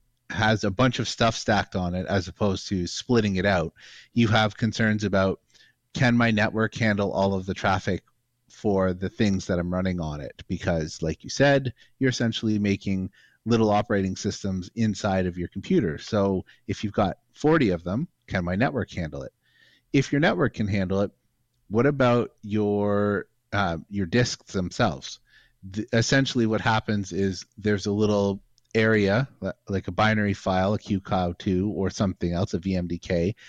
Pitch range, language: 95-115 Hz, English